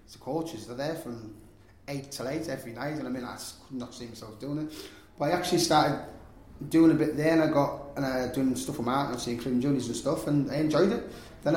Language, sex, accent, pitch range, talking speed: English, male, British, 110-145 Hz, 260 wpm